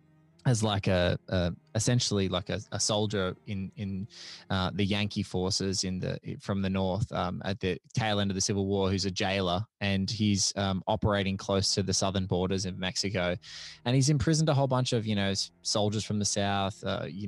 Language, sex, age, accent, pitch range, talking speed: English, male, 20-39, Australian, 95-120 Hz, 200 wpm